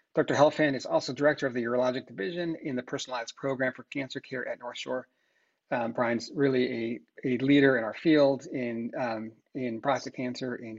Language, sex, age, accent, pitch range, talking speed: English, male, 40-59, American, 120-145 Hz, 190 wpm